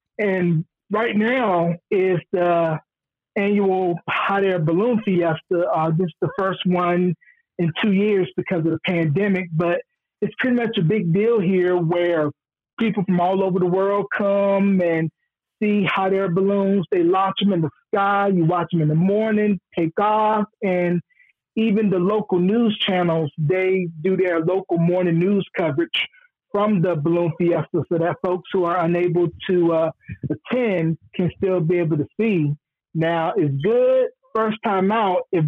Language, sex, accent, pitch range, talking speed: English, male, American, 175-220 Hz, 165 wpm